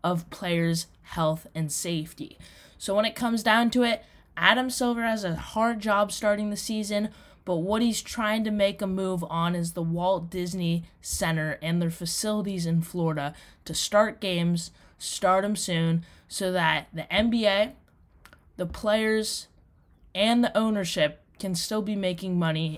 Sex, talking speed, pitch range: female, 160 wpm, 175-225 Hz